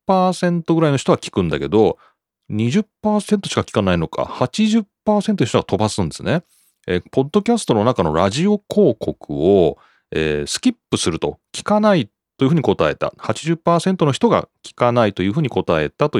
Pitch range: 95-150 Hz